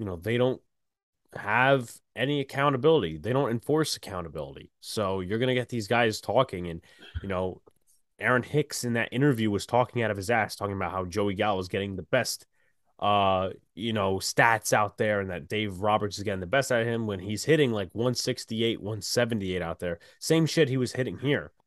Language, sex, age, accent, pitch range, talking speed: English, male, 20-39, American, 100-135 Hz, 200 wpm